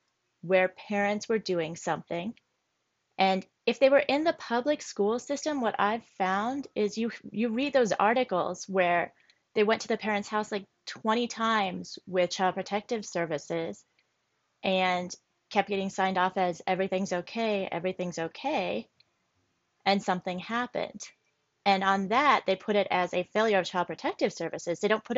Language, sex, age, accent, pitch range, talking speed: English, female, 30-49, American, 175-215 Hz, 155 wpm